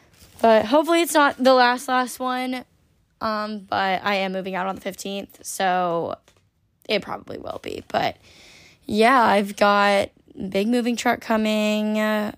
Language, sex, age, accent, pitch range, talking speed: English, female, 10-29, American, 205-245 Hz, 145 wpm